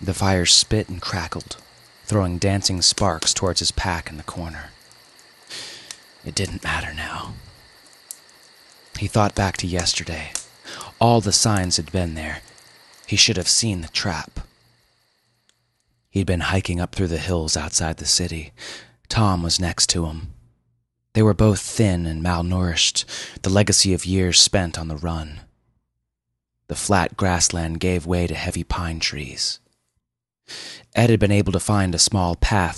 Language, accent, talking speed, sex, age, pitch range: English, American, 150 wpm, male, 30-49, 85-110 Hz